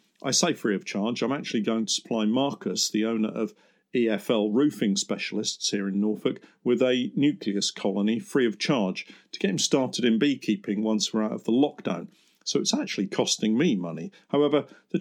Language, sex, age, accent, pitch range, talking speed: English, male, 50-69, British, 110-160 Hz, 190 wpm